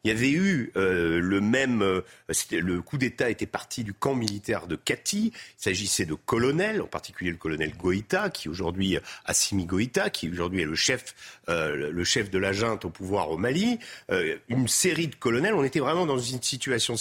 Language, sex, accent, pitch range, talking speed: French, male, French, 105-160 Hz, 205 wpm